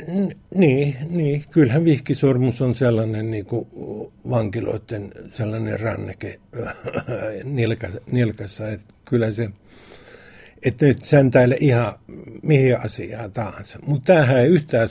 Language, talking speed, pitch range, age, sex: Finnish, 110 wpm, 110-130 Hz, 60-79, male